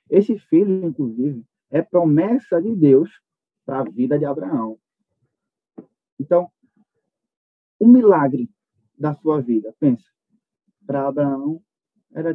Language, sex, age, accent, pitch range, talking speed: Portuguese, male, 20-39, Brazilian, 145-195 Hz, 105 wpm